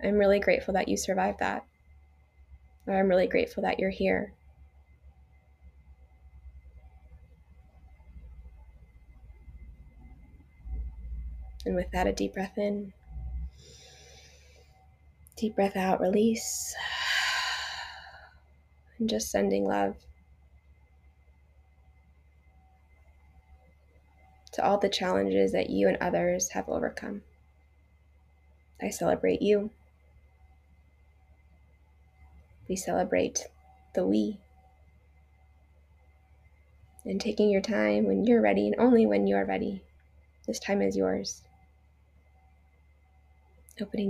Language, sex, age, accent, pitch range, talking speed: English, female, 20-39, American, 75-100 Hz, 85 wpm